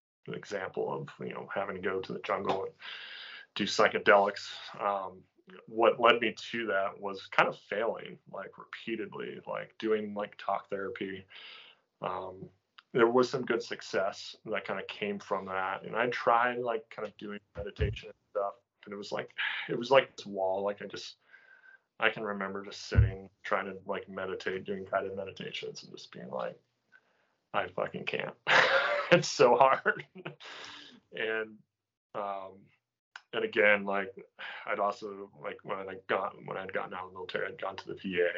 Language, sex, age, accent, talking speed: English, male, 20-39, American, 170 wpm